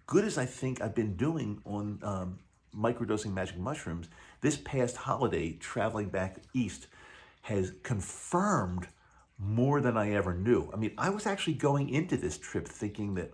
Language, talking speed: English, 165 wpm